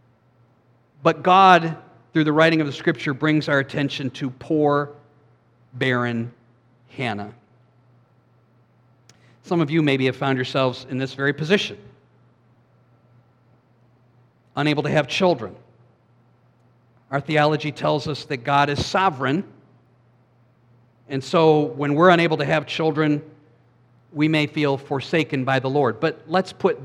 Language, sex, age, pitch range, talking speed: English, male, 50-69, 120-155 Hz, 125 wpm